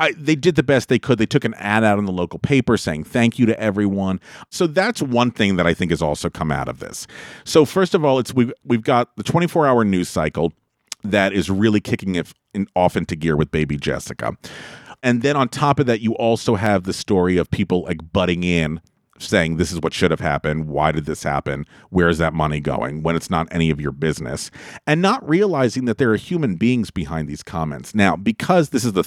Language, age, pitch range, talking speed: English, 40-59, 85-125 Hz, 235 wpm